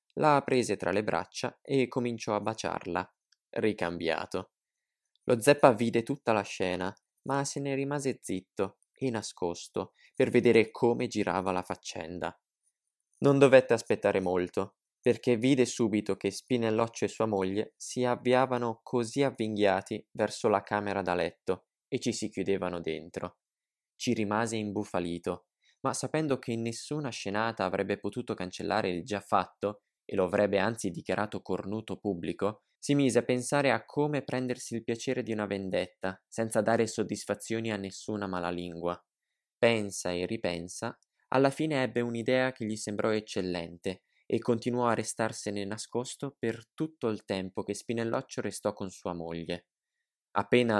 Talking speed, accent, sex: 145 wpm, native, male